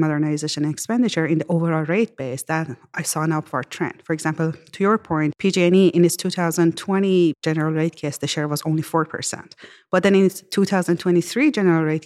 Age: 30-49